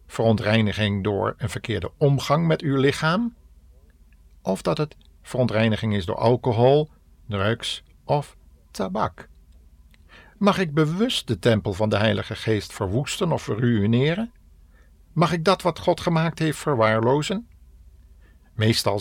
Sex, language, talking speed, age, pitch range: male, Dutch, 125 wpm, 50-69, 90-135 Hz